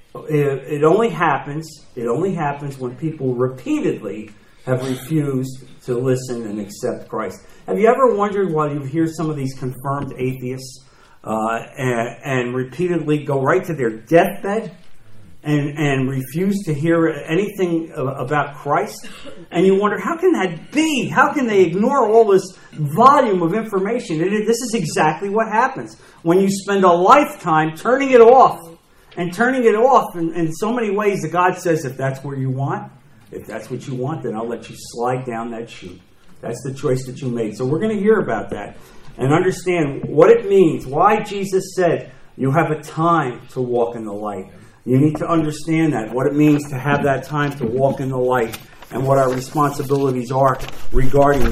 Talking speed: 185 wpm